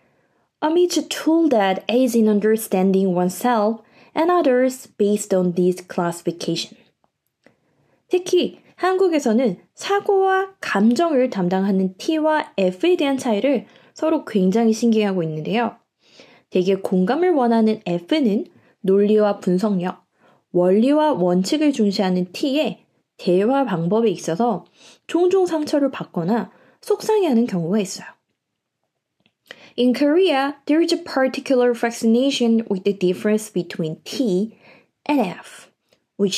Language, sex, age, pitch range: Korean, female, 20-39, 190-275 Hz